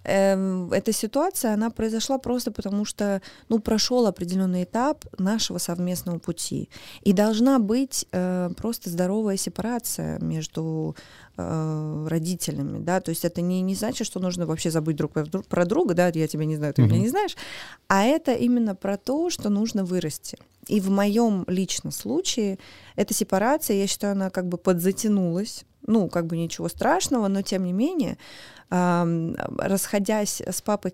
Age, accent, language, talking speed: 20-39, native, Russian, 150 wpm